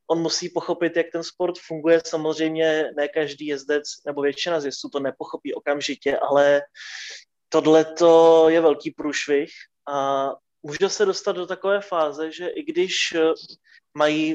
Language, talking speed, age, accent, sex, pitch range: Czech, 140 wpm, 20-39, native, male, 145-165 Hz